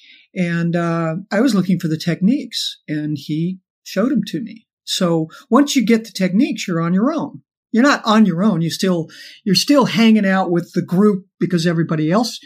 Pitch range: 175-250 Hz